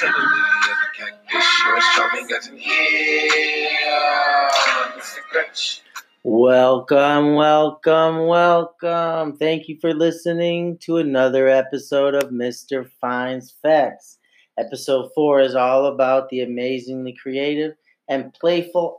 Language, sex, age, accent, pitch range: English, male, 40-59, American, 115-150 Hz